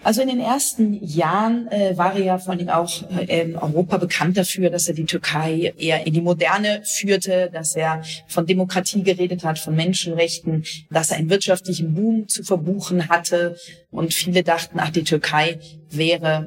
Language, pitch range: German, 160-185 Hz